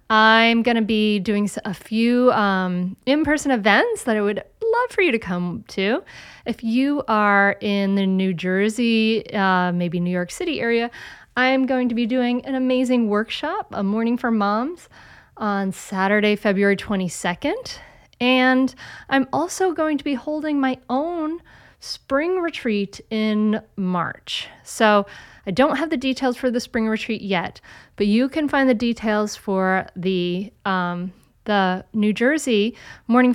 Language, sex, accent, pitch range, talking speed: English, female, American, 195-255 Hz, 155 wpm